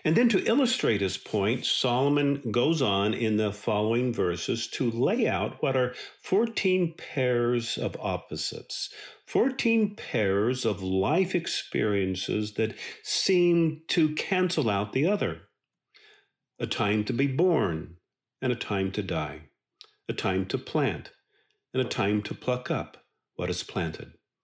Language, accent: English, American